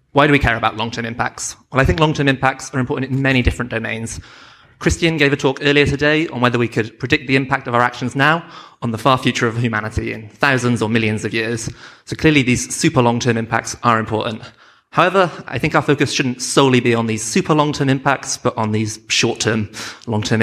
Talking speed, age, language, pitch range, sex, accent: 215 wpm, 30-49, English, 110-135 Hz, male, British